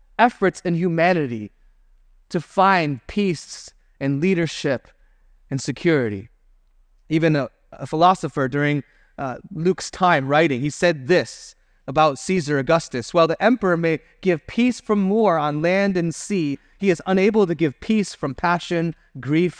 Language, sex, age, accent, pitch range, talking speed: English, male, 30-49, American, 140-185 Hz, 140 wpm